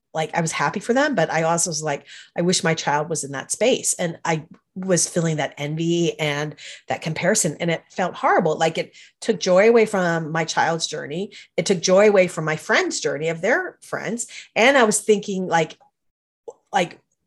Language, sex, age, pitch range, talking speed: English, female, 30-49, 155-195 Hz, 200 wpm